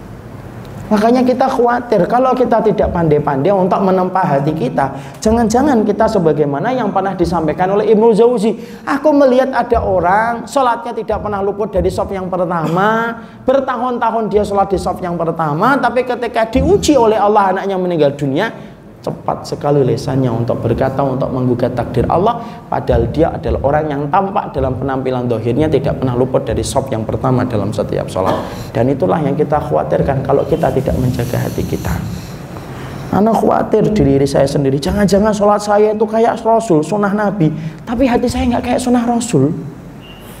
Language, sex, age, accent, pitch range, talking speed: Indonesian, male, 30-49, native, 135-225 Hz, 155 wpm